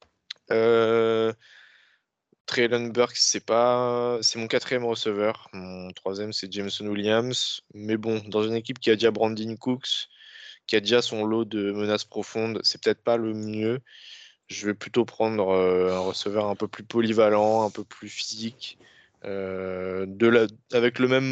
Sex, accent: male, French